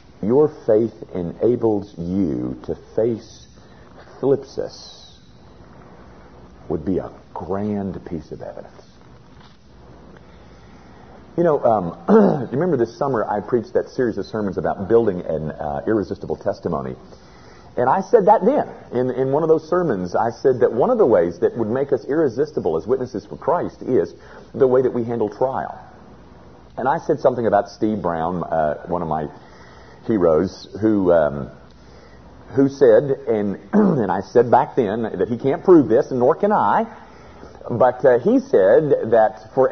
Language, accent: English, American